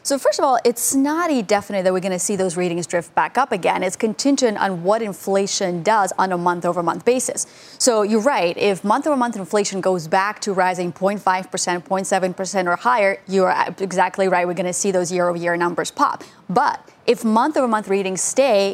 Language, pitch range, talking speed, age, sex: English, 185-240 Hz, 185 wpm, 30-49, female